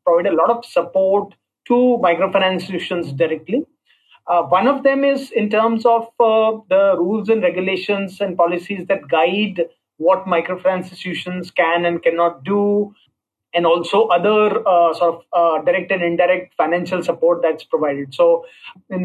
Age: 30-49